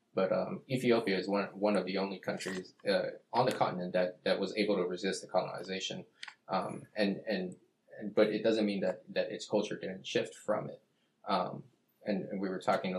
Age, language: 20-39, English